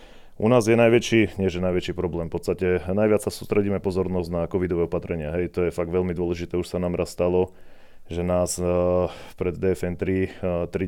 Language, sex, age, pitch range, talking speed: Slovak, male, 30-49, 90-95 Hz, 190 wpm